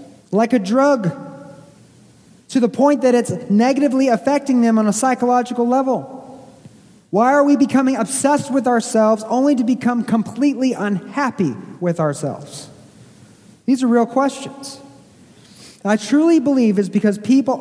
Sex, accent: male, American